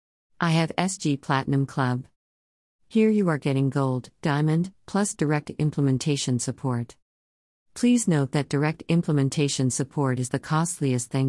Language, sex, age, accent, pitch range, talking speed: English, female, 50-69, American, 125-155 Hz, 135 wpm